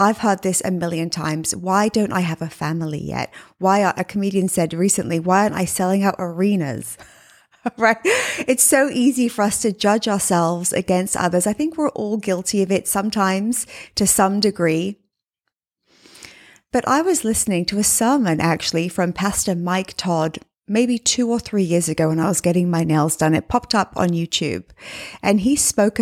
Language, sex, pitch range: English, female, 165-210 Hz